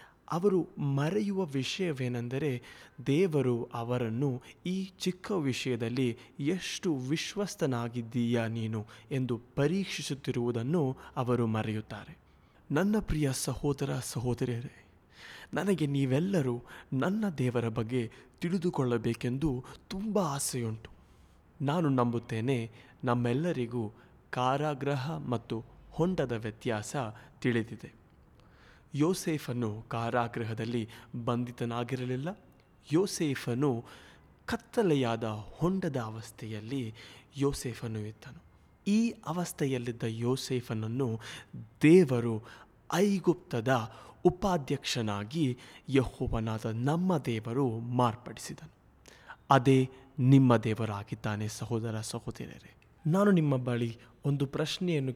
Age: 20-39